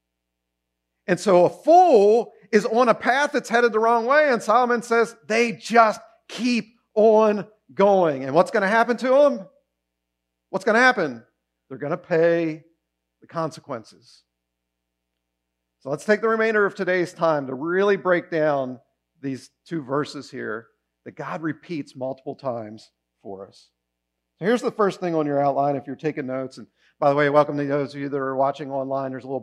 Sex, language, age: male, English, 50-69